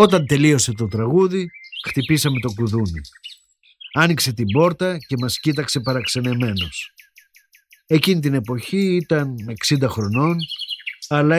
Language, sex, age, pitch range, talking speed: Greek, male, 50-69, 125-180 Hz, 110 wpm